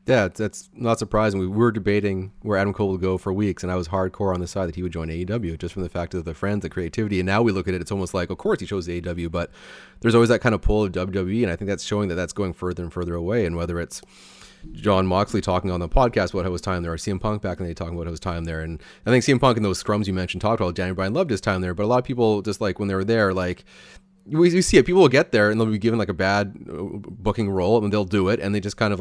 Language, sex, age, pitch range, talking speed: English, male, 30-49, 95-115 Hz, 315 wpm